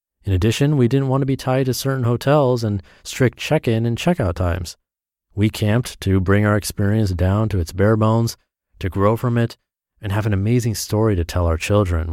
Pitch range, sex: 95-125 Hz, male